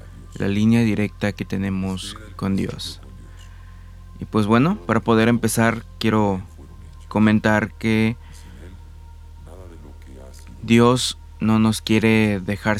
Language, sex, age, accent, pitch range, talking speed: Spanish, male, 20-39, Mexican, 90-110 Hz, 100 wpm